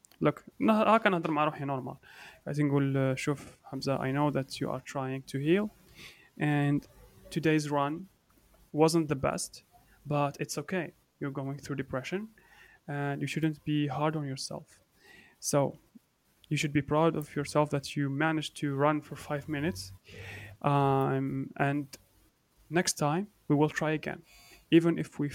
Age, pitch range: 30-49, 145-180 Hz